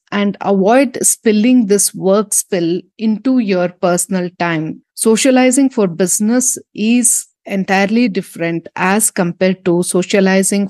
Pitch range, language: 175-225 Hz, English